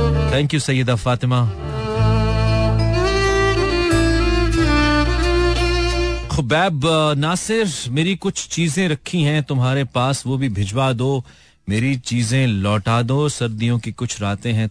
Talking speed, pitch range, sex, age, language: 105 wpm, 95-120 Hz, male, 40-59, Hindi